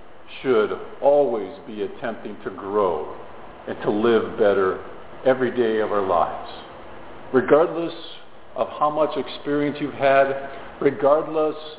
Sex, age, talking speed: male, 50-69, 115 wpm